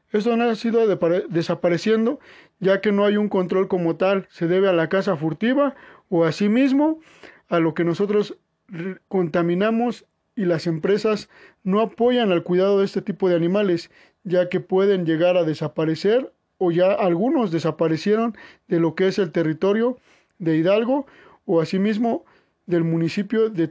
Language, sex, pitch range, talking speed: Spanish, male, 170-205 Hz, 160 wpm